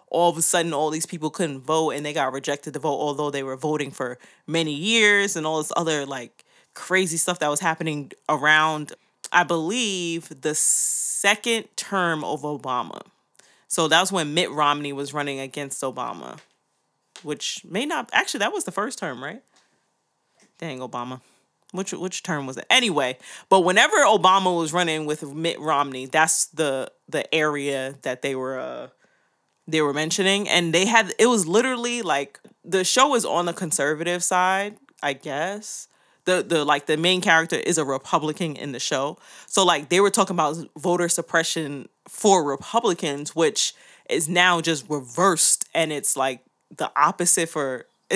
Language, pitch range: English, 145-185 Hz